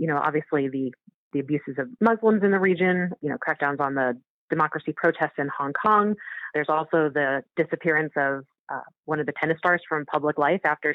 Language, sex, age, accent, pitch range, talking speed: English, female, 30-49, American, 155-185 Hz, 195 wpm